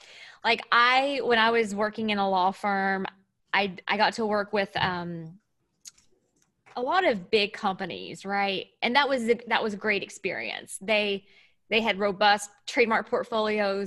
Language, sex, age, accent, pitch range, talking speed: English, female, 20-39, American, 195-235 Hz, 165 wpm